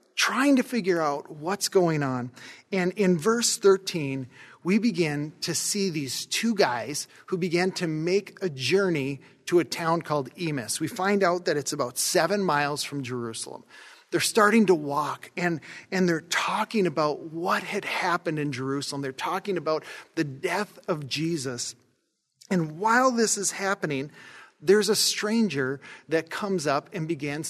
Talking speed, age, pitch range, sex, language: 160 wpm, 40-59, 160-210 Hz, male, English